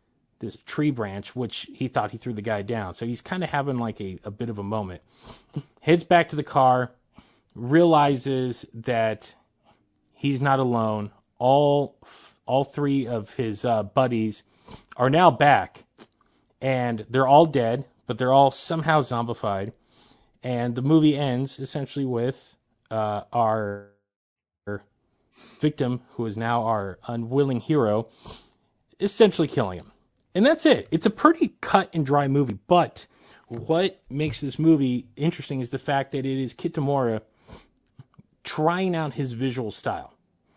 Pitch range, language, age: 110-145 Hz, English, 30-49